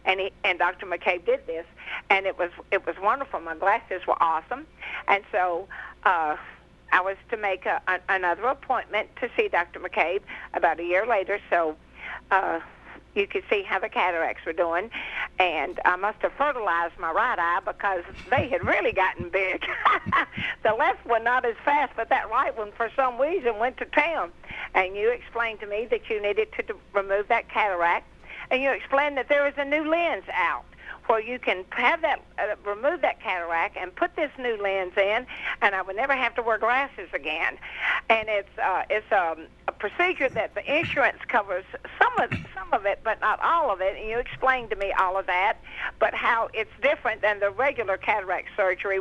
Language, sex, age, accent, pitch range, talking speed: English, female, 60-79, American, 195-275 Hz, 195 wpm